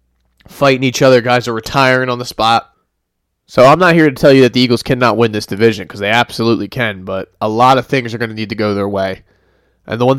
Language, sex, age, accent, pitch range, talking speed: English, male, 20-39, American, 115-135 Hz, 255 wpm